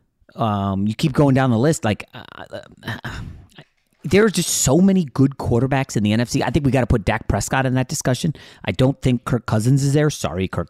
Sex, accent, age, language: male, American, 30-49, English